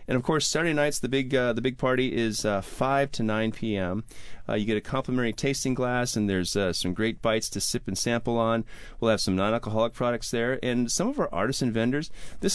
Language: English